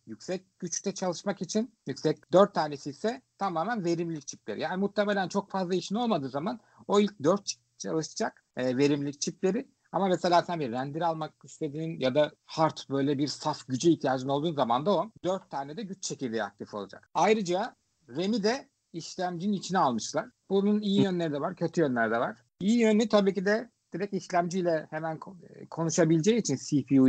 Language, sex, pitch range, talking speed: Turkish, male, 140-195 Hz, 170 wpm